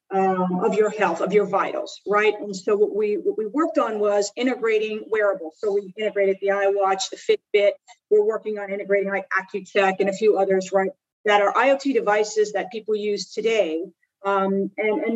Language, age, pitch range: English, 40-59, 200-255 Hz